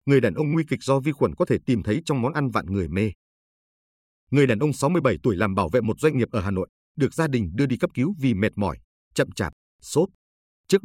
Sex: male